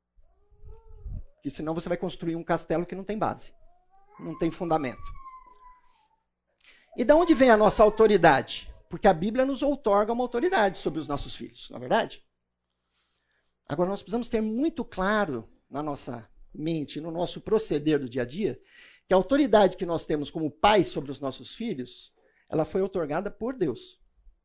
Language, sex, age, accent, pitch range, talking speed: Portuguese, male, 50-69, Brazilian, 140-220 Hz, 165 wpm